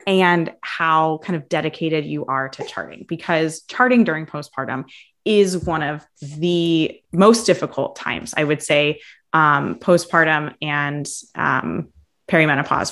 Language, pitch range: English, 155-190 Hz